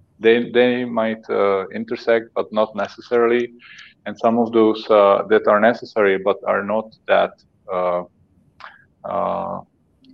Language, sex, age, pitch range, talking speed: English, male, 20-39, 95-110 Hz, 130 wpm